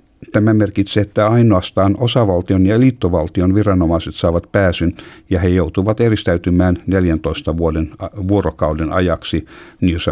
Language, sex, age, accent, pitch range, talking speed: Finnish, male, 60-79, native, 80-100 Hz, 120 wpm